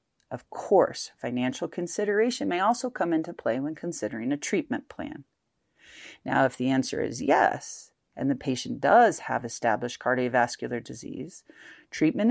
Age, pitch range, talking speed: 40-59, 140-215 Hz, 140 wpm